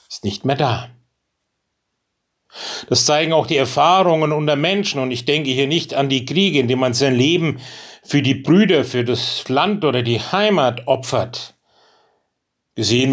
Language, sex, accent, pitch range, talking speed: German, male, German, 130-170 Hz, 160 wpm